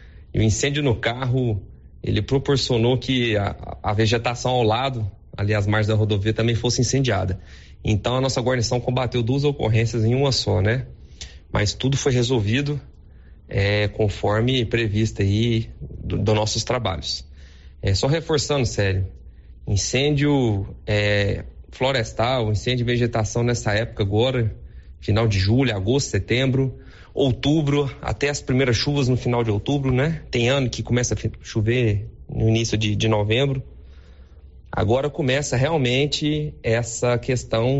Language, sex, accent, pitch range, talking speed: Portuguese, male, Brazilian, 100-125 Hz, 135 wpm